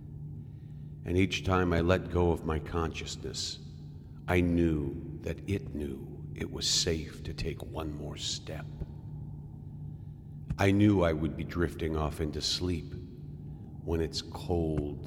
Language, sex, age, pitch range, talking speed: English, male, 50-69, 75-90 Hz, 135 wpm